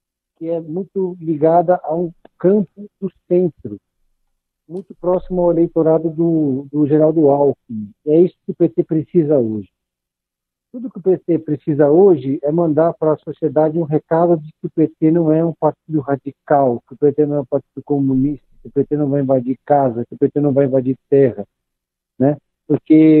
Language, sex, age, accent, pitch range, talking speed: Portuguese, male, 60-79, Brazilian, 135-170 Hz, 180 wpm